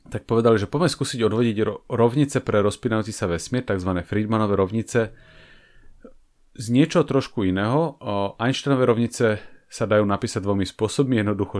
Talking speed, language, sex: 135 wpm, English, male